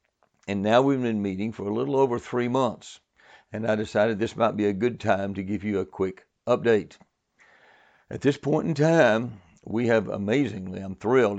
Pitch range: 100-130 Hz